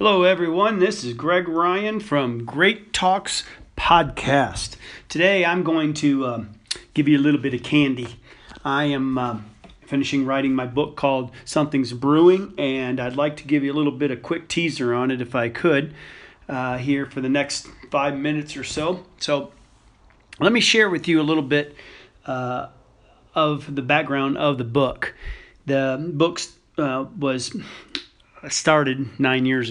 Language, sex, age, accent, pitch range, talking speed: English, male, 40-59, American, 130-150 Hz, 165 wpm